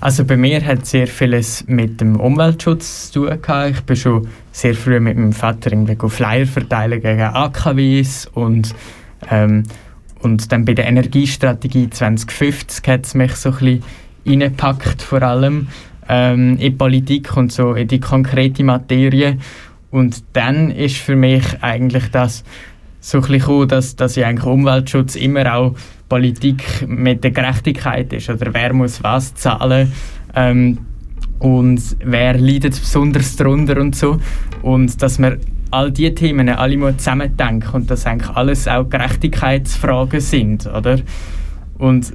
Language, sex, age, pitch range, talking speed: German, male, 20-39, 120-135 Hz, 145 wpm